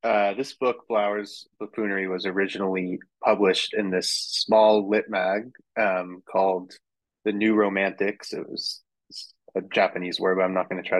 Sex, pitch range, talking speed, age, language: male, 95-105 Hz, 165 wpm, 20-39, English